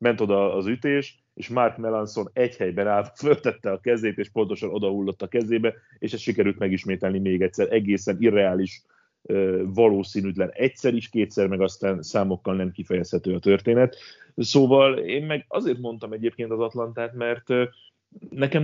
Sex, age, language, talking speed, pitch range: male, 30-49, Hungarian, 150 wpm, 95-115 Hz